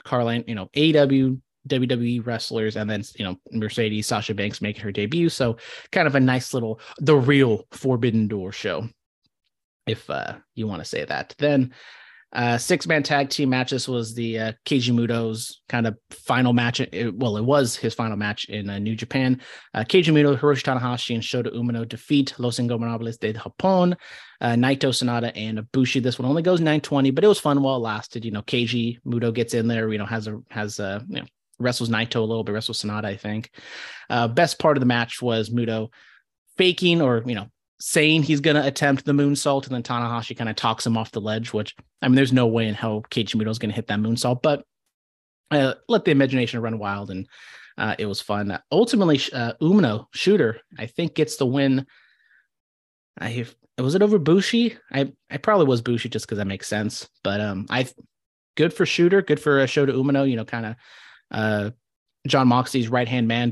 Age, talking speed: 30-49, 210 wpm